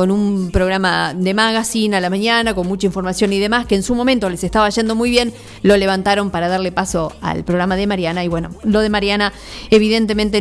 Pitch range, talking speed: 185-215 Hz, 215 wpm